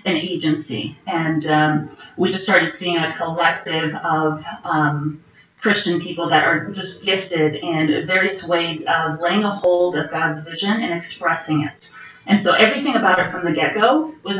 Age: 30-49